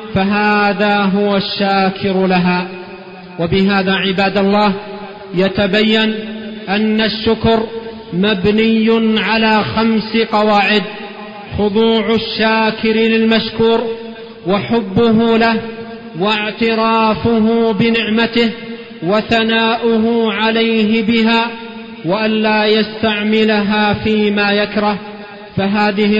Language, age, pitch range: Arabic, 40-59, 200-220 Hz